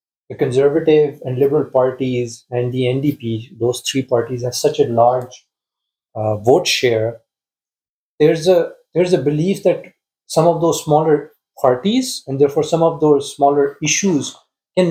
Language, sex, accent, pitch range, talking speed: English, male, Indian, 125-170 Hz, 150 wpm